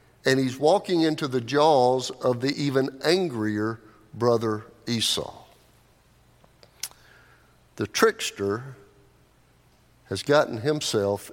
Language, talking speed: English, 90 wpm